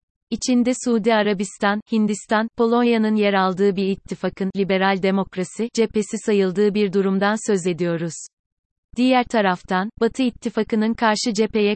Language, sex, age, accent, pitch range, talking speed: Turkish, female, 30-49, native, 190-220 Hz, 115 wpm